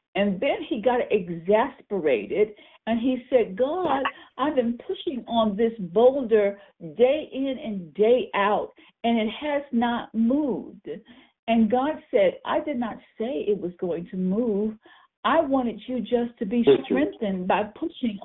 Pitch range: 220-290 Hz